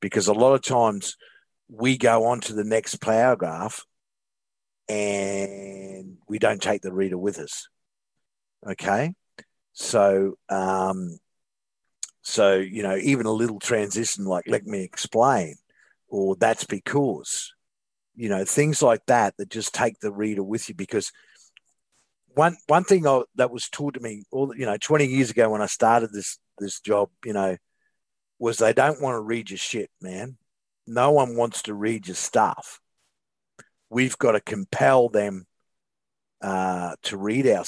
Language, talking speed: English, 155 wpm